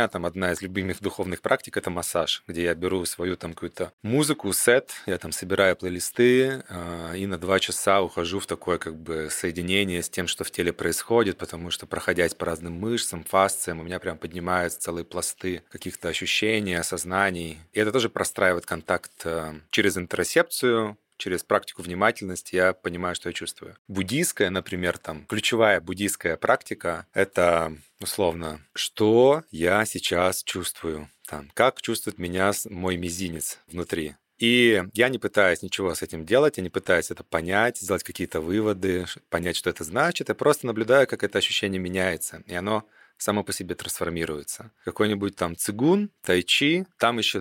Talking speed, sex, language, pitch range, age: 160 wpm, male, Russian, 90-105 Hz, 30-49